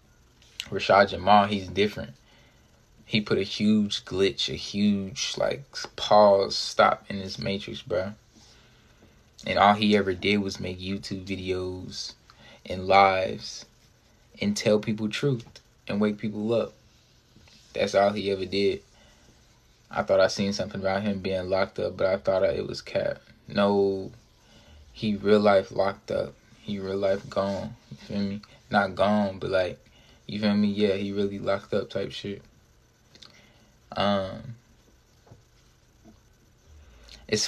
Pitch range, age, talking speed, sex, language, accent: 95-110 Hz, 20-39, 140 wpm, male, English, American